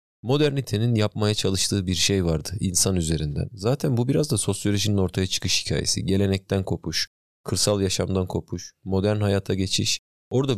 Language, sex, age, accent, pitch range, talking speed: Turkish, male, 40-59, native, 90-115 Hz, 140 wpm